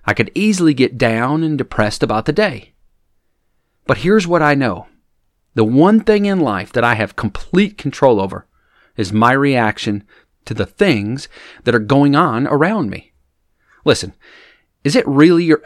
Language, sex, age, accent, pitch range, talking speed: English, male, 40-59, American, 110-155 Hz, 165 wpm